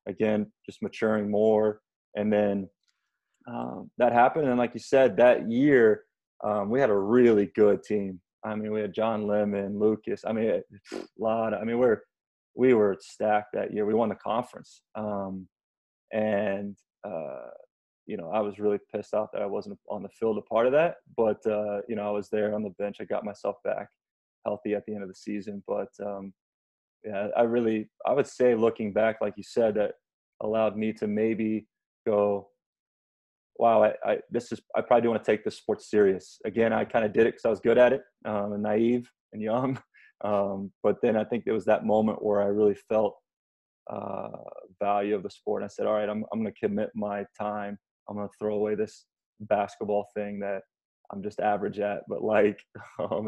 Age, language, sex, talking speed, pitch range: 20-39, English, male, 205 wpm, 100-110 Hz